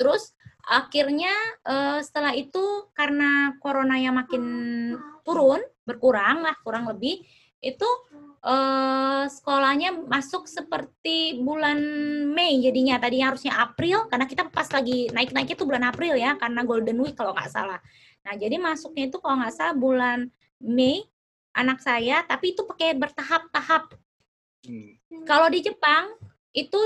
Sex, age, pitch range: female, 20-39, 250-315 Hz